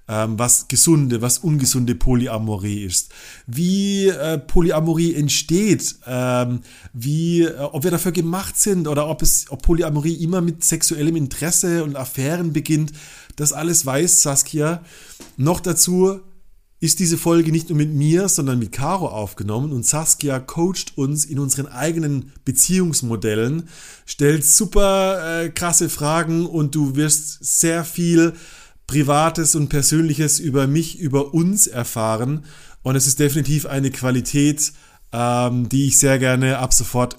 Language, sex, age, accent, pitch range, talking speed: German, male, 30-49, German, 125-165 Hz, 140 wpm